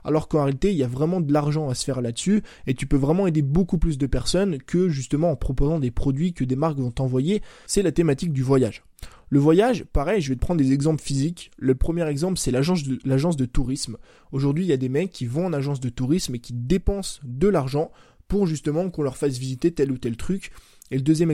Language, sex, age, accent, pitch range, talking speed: French, male, 20-39, French, 130-165 Hz, 240 wpm